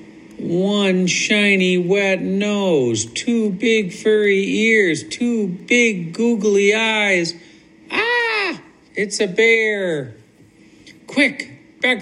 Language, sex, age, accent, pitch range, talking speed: English, male, 50-69, American, 165-220 Hz, 90 wpm